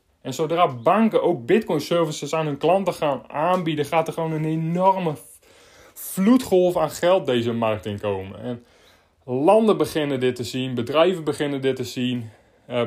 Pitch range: 130-170 Hz